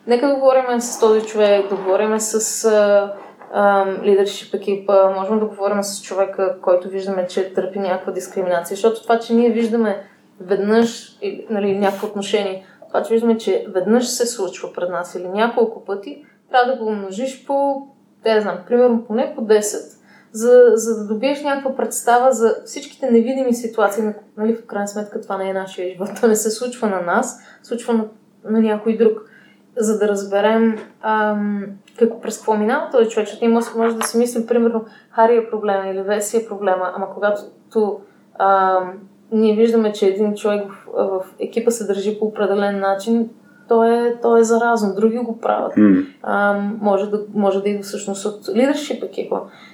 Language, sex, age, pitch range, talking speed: Bulgarian, female, 20-39, 195-230 Hz, 170 wpm